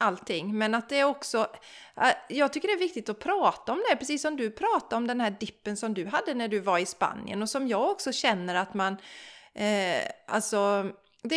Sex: female